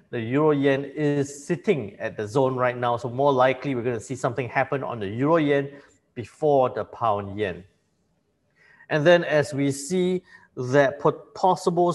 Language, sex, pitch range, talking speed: English, male, 130-160 Hz, 170 wpm